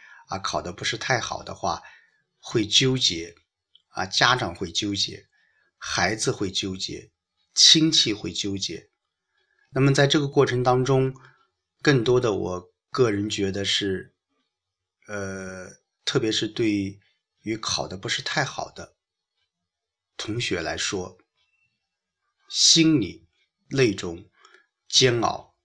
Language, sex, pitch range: Chinese, male, 95-125 Hz